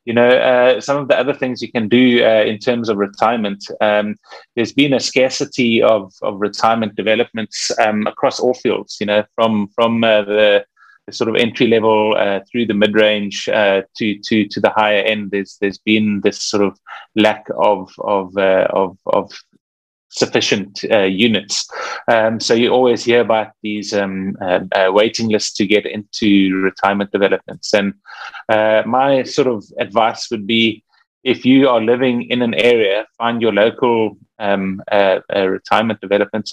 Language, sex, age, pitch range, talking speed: English, male, 30-49, 105-120 Hz, 175 wpm